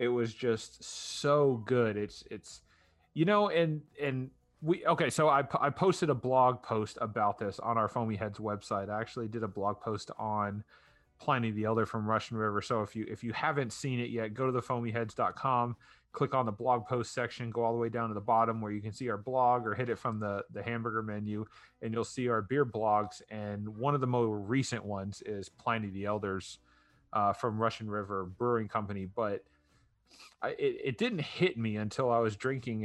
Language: English